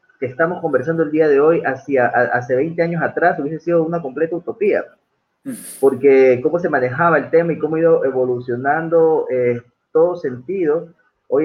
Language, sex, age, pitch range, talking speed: Spanish, male, 30-49, 130-175 Hz, 175 wpm